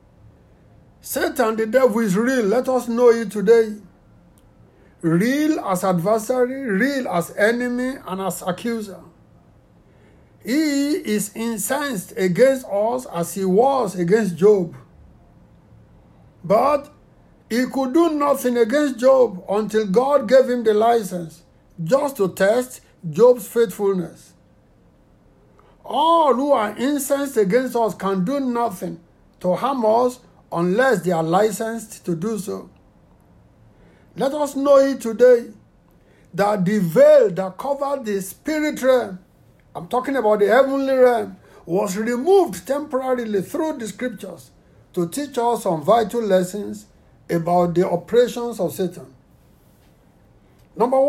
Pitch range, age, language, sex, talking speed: 190-260 Hz, 60-79, English, male, 120 wpm